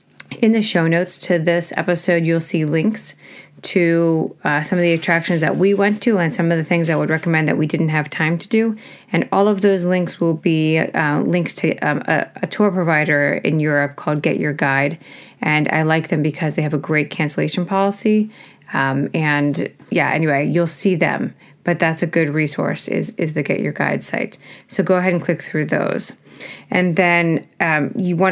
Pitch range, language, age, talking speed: 155-185 Hz, English, 30-49, 210 wpm